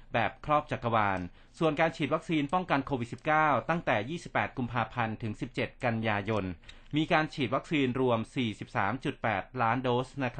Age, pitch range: 30-49, 115-135 Hz